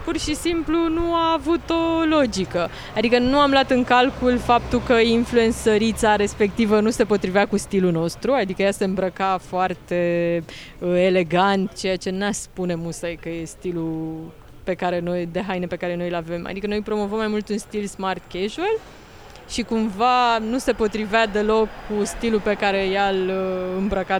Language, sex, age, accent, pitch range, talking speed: Romanian, female, 20-39, native, 185-245 Hz, 175 wpm